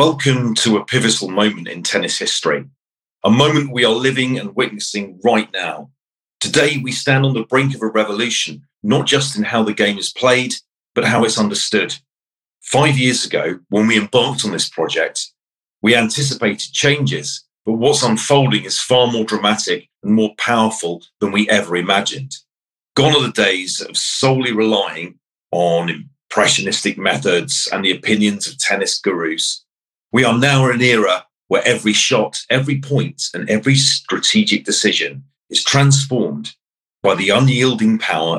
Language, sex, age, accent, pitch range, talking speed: English, male, 40-59, British, 100-135 Hz, 160 wpm